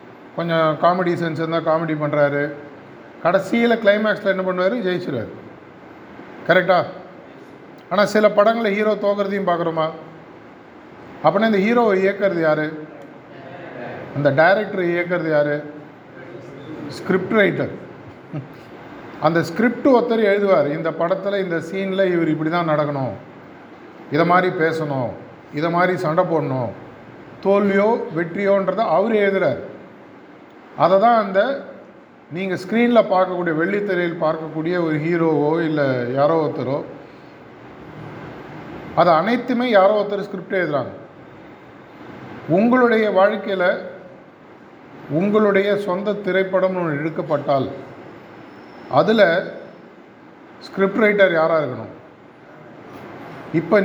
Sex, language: male, Tamil